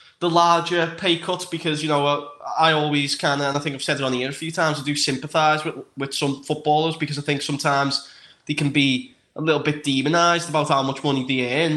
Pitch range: 135-150 Hz